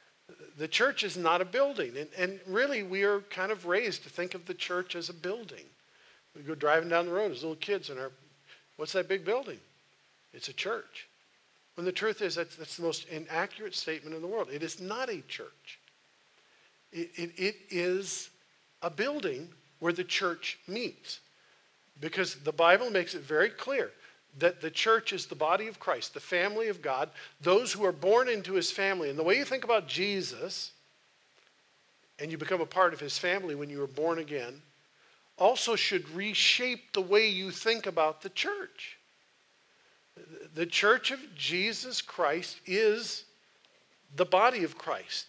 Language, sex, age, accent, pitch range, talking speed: English, male, 50-69, American, 165-215 Hz, 180 wpm